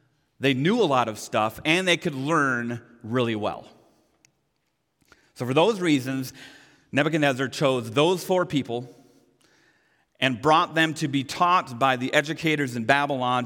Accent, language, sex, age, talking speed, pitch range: American, English, male, 40-59, 145 wpm, 115-150 Hz